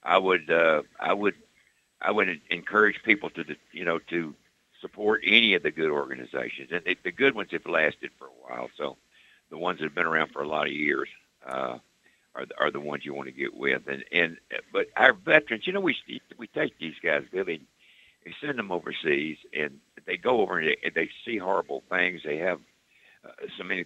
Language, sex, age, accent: English, male, 60-79, American